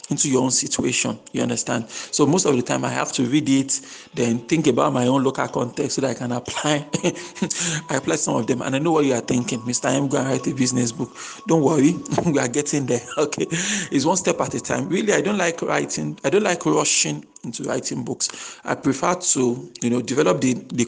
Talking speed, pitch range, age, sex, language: 235 wpm, 125-165 Hz, 40-59, male, English